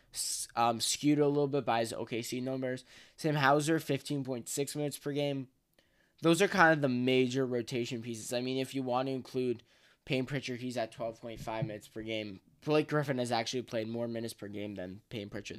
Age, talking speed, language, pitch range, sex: 10-29, 195 wpm, English, 120-155 Hz, male